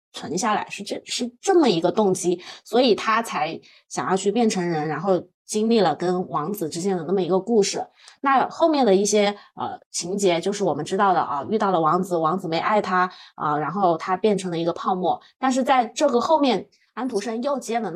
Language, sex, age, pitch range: Chinese, female, 20-39, 175-220 Hz